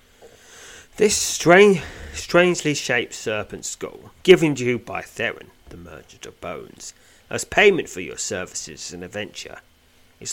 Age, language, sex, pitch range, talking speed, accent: 30-49, English, male, 85-140 Hz, 135 wpm, British